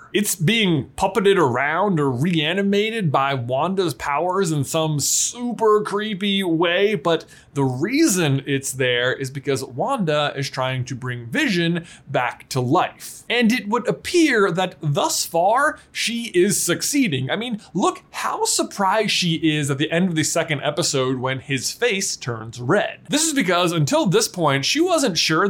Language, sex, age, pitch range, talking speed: English, male, 20-39, 135-200 Hz, 160 wpm